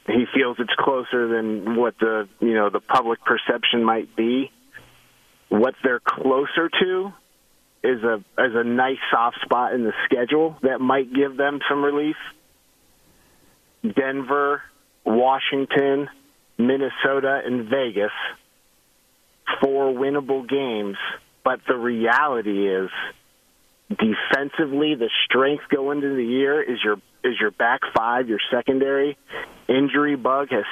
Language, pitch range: English, 110-140 Hz